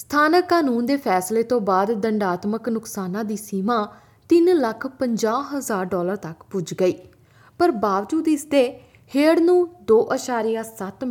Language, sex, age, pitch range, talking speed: Punjabi, female, 20-39, 180-230 Hz, 120 wpm